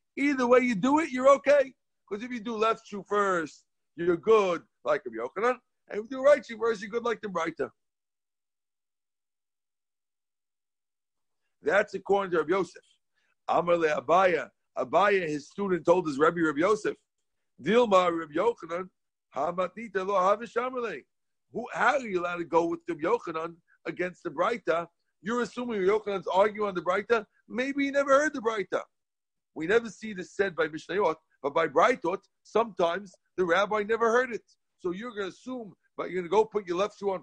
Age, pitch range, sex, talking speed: 50-69, 180-250 Hz, male, 170 wpm